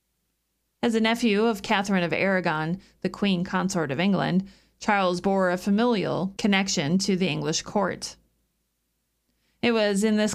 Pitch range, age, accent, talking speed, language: 170-225 Hz, 40-59, American, 145 wpm, English